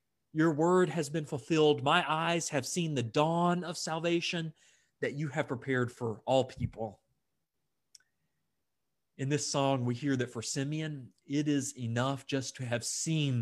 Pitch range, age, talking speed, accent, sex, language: 120-160 Hz, 30-49, 155 wpm, American, male, English